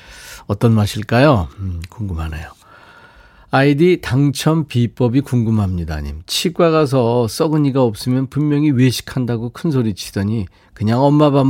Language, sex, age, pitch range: Korean, male, 40-59, 100-140 Hz